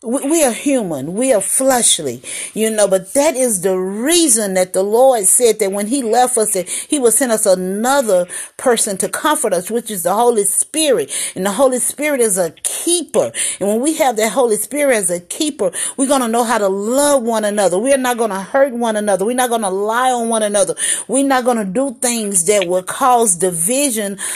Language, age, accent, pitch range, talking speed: English, 40-59, American, 195-265 Hz, 215 wpm